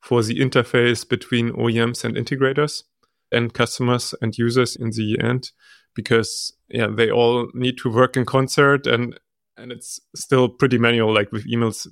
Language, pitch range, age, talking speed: German, 110-125 Hz, 20-39, 160 wpm